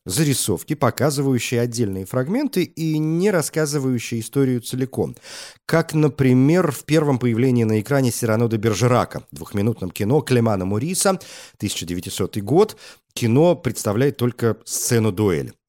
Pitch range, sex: 105-145 Hz, male